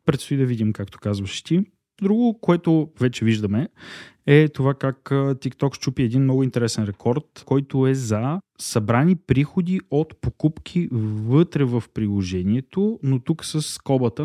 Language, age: Bulgarian, 20-39